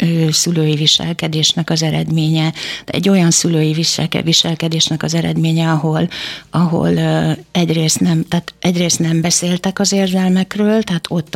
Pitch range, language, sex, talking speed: 165-180 Hz, Hungarian, female, 105 wpm